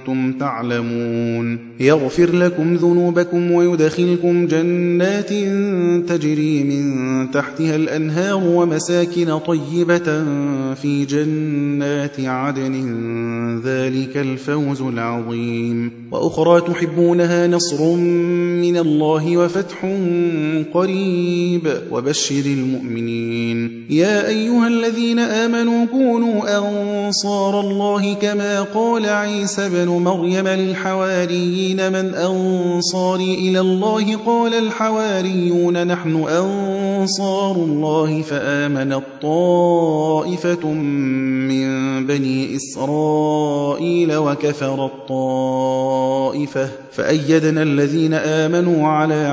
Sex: male